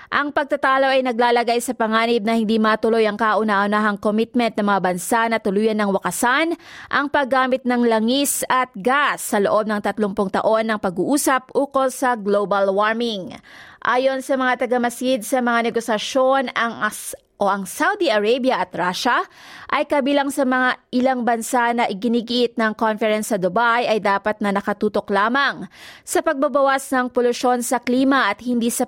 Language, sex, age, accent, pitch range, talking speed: Filipino, female, 20-39, native, 215-265 Hz, 160 wpm